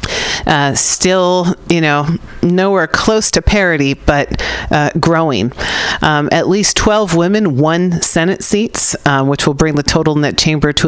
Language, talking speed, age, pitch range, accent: English, 155 wpm, 40-59, 135-180 Hz, American